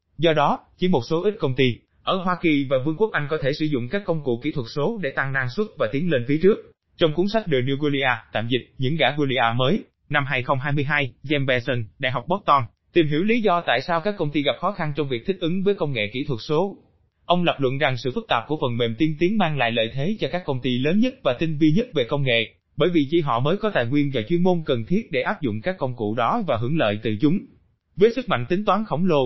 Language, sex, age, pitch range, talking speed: Vietnamese, male, 20-39, 130-175 Hz, 280 wpm